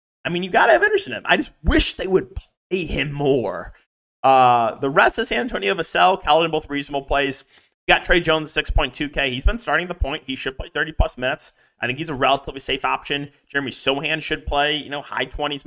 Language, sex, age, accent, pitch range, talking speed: English, male, 20-39, American, 120-160 Hz, 220 wpm